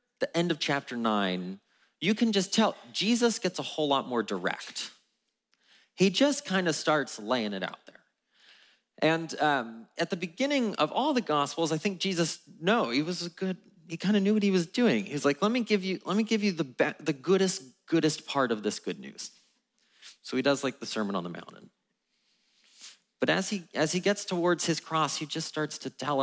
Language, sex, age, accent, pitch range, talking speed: English, male, 30-49, American, 115-185 Hz, 215 wpm